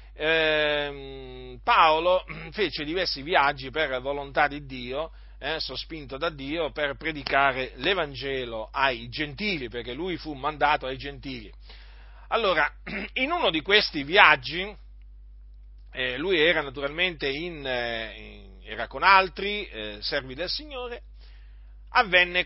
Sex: male